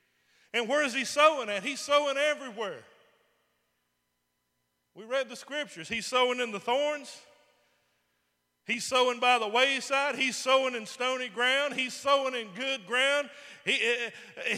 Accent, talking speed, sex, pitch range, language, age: American, 140 wpm, male, 160-260 Hz, English, 40-59